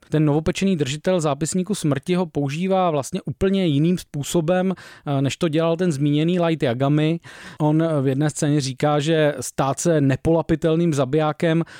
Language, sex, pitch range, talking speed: Czech, male, 145-170 Hz, 140 wpm